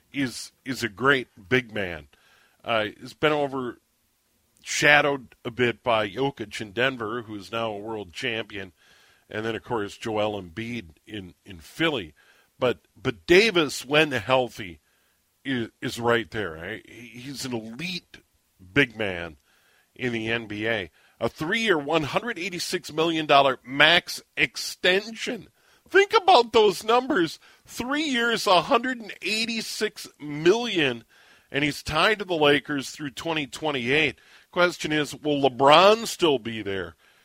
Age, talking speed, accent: 40-59, 125 wpm, American